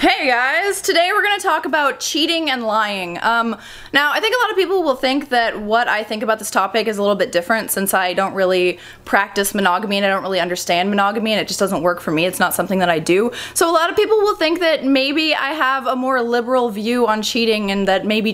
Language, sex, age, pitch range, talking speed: English, female, 20-39, 195-260 Hz, 250 wpm